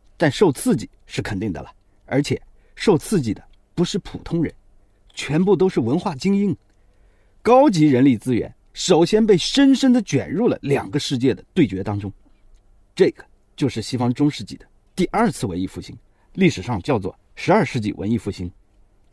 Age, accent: 50-69, native